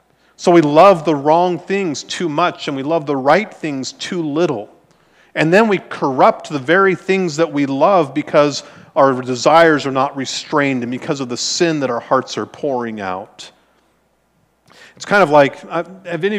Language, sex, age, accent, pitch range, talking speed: English, male, 40-59, American, 130-175 Hz, 180 wpm